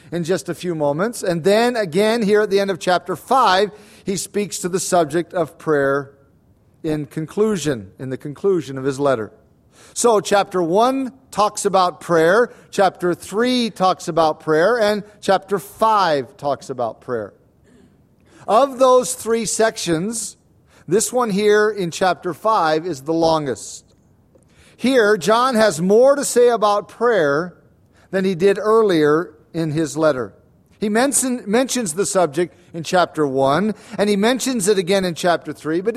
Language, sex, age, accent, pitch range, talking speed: English, male, 50-69, American, 155-210 Hz, 155 wpm